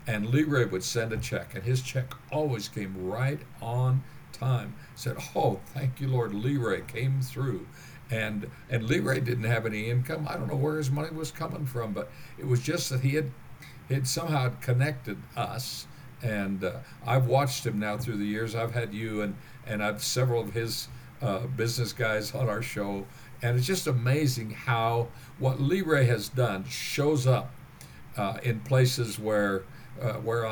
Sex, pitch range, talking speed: male, 115-135 Hz, 180 wpm